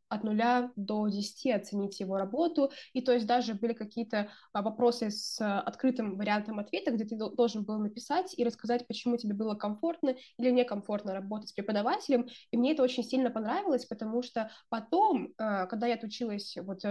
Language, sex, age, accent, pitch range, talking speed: Russian, female, 20-39, native, 210-260 Hz, 165 wpm